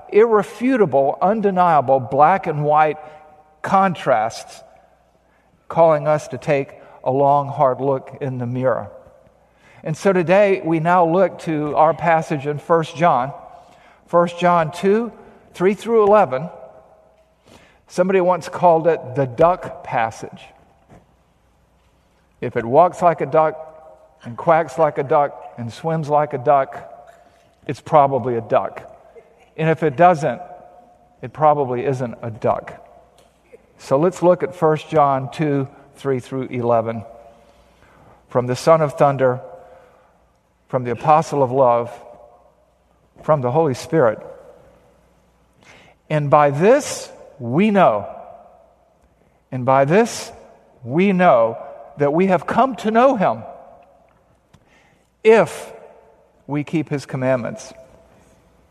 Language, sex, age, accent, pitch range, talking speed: English, male, 50-69, American, 135-180 Hz, 120 wpm